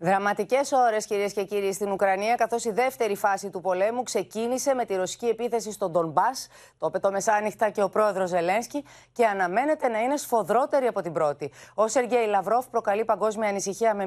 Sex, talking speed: female, 180 wpm